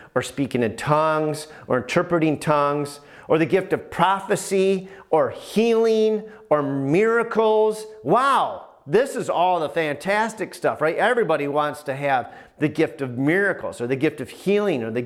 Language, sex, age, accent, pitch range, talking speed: English, male, 40-59, American, 150-210 Hz, 155 wpm